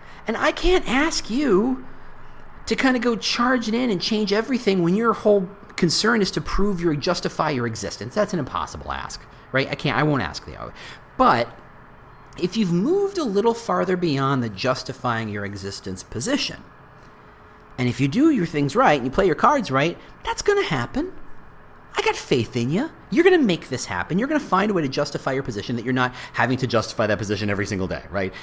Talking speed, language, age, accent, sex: 210 wpm, English, 40-59, American, male